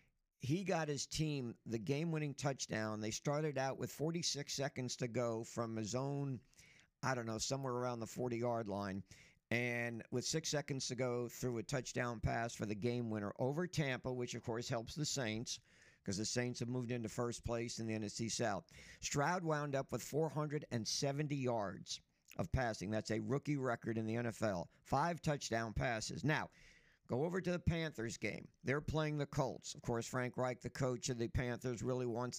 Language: English